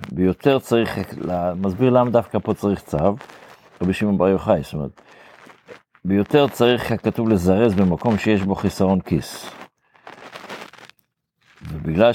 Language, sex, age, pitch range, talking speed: Hebrew, male, 50-69, 90-115 Hz, 120 wpm